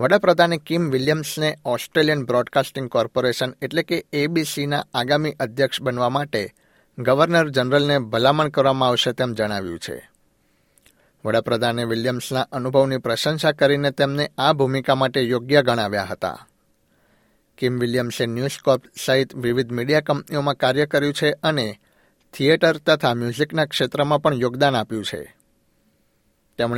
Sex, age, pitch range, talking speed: male, 60-79, 125-145 Hz, 120 wpm